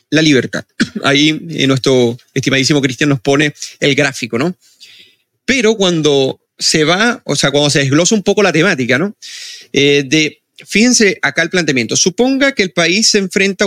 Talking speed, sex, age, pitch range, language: 160 wpm, male, 30-49, 140-190 Hz, Spanish